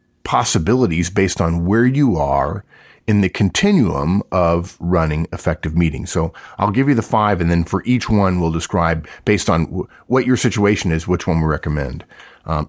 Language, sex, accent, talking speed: English, male, American, 175 wpm